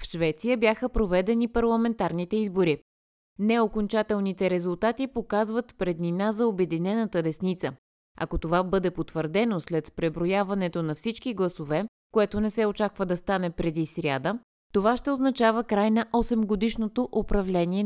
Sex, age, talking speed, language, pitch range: female, 20-39, 125 wpm, Bulgarian, 165-220 Hz